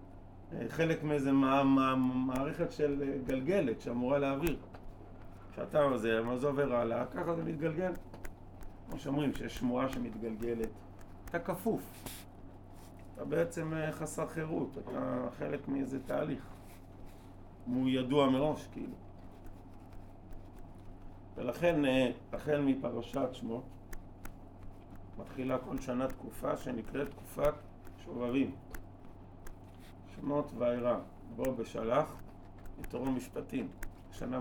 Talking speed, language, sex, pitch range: 90 wpm, Hebrew, male, 95-130 Hz